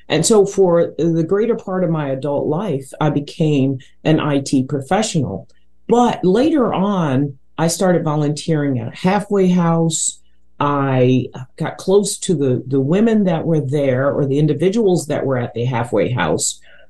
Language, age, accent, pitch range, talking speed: English, 40-59, American, 125-165 Hz, 155 wpm